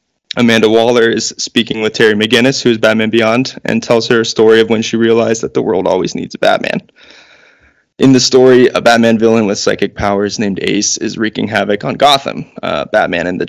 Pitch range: 110-120 Hz